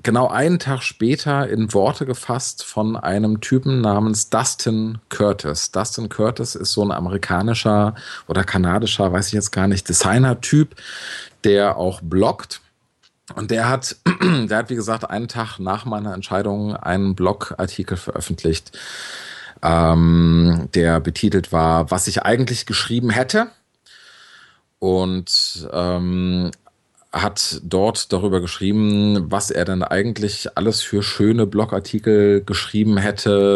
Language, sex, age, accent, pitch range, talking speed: English, male, 40-59, German, 95-115 Hz, 125 wpm